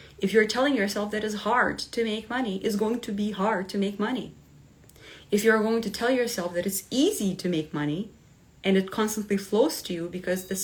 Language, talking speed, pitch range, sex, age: English, 215 wpm, 175-215 Hz, female, 30-49